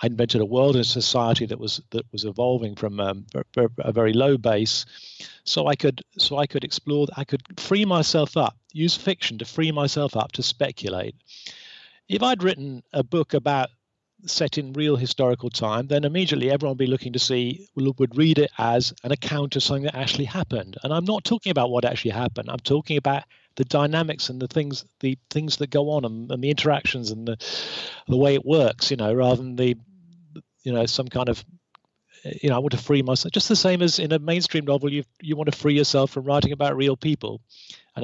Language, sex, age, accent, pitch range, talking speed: English, male, 50-69, British, 115-150 Hz, 215 wpm